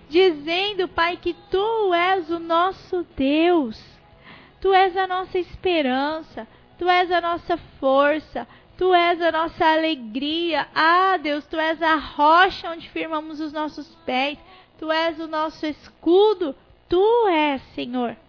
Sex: female